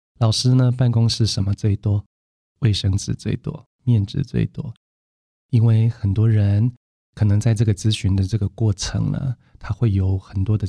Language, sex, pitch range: Chinese, male, 95-115 Hz